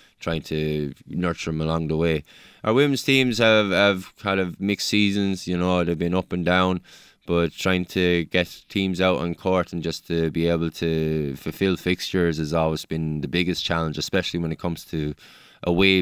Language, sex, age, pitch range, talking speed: English, male, 20-39, 80-95 Hz, 190 wpm